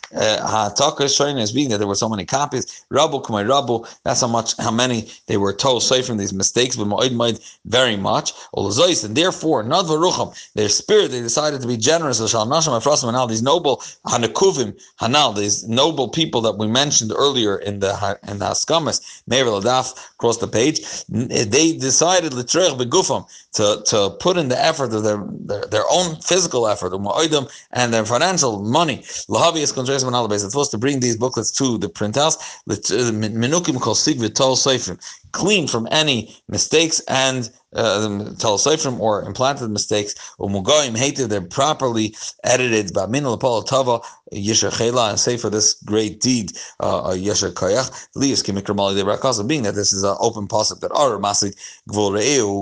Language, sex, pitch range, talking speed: English, male, 105-140 Hz, 140 wpm